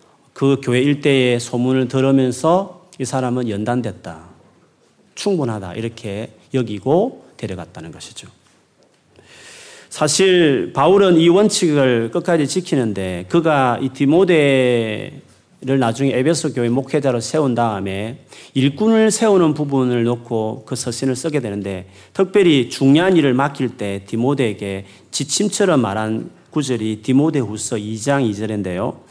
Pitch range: 110-155 Hz